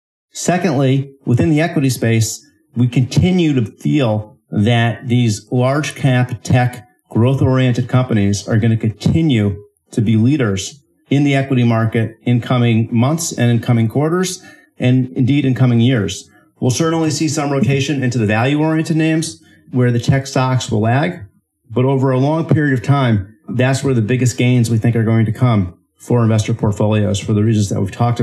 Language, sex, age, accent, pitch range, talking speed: English, male, 40-59, American, 110-130 Hz, 175 wpm